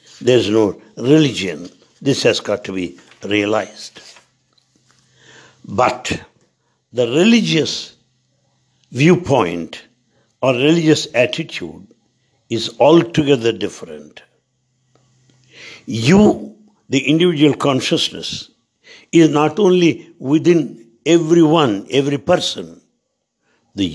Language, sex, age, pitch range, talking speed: English, male, 60-79, 120-165 Hz, 80 wpm